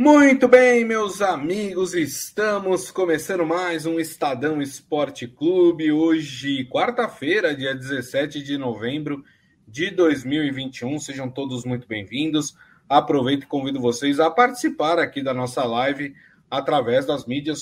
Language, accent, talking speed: Portuguese, Brazilian, 125 wpm